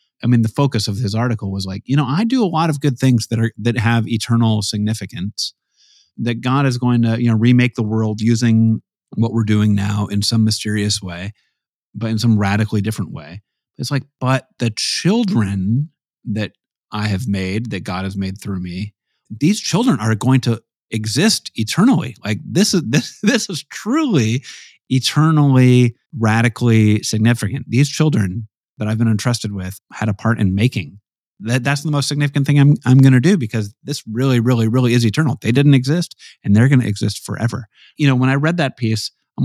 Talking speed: 195 wpm